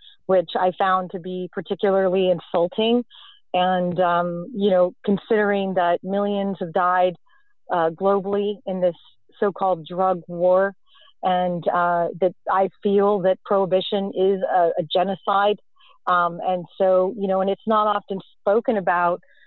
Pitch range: 185-210 Hz